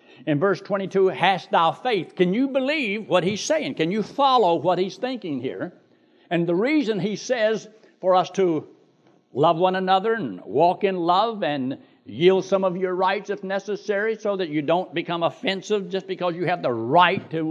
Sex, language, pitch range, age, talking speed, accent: male, English, 170-225 Hz, 60-79, 190 wpm, American